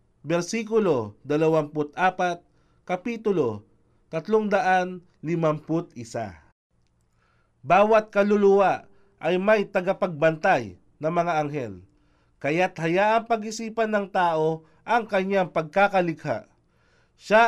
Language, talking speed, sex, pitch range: Filipino, 70 wpm, male, 150-205 Hz